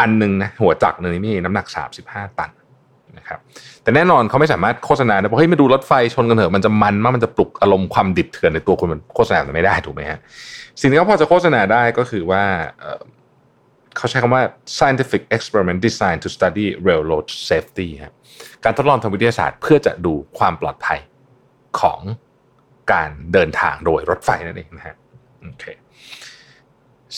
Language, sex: Thai, male